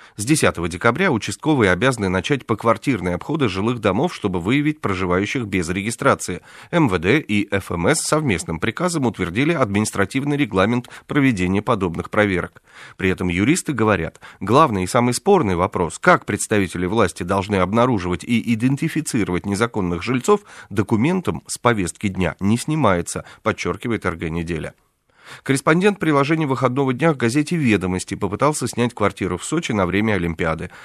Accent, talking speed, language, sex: native, 130 wpm, Russian, male